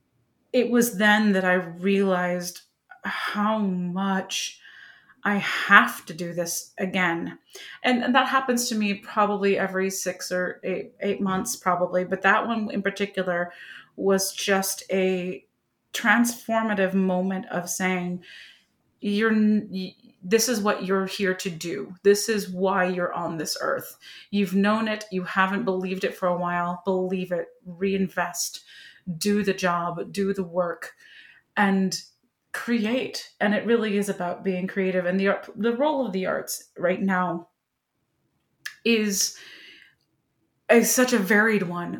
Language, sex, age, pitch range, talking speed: English, female, 30-49, 185-210 Hz, 140 wpm